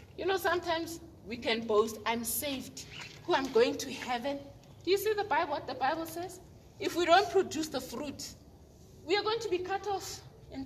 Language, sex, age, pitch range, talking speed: English, female, 30-49, 245-375 Hz, 205 wpm